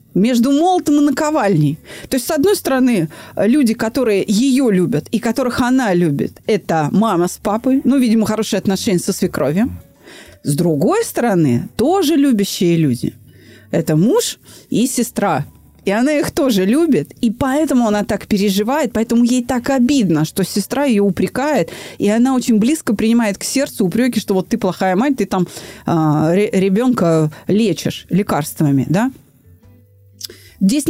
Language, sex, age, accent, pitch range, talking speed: Russian, female, 30-49, native, 185-265 Hz, 145 wpm